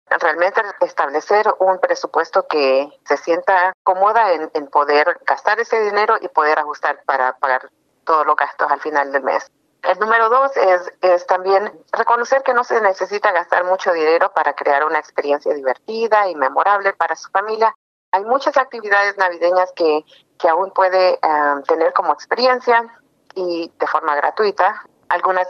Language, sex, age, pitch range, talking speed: English, female, 40-59, 165-215 Hz, 160 wpm